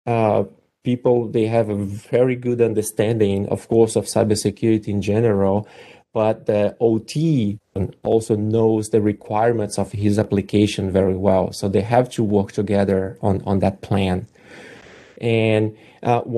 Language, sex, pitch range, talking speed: English, male, 105-120 Hz, 140 wpm